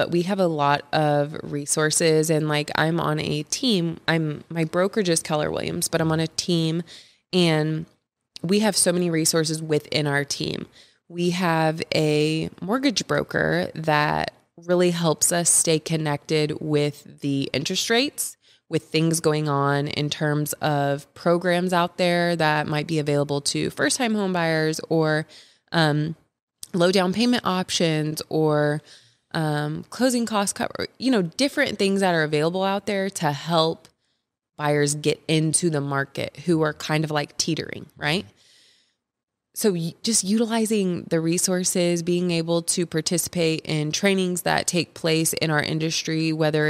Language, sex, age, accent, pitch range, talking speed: English, female, 20-39, American, 150-180 Hz, 155 wpm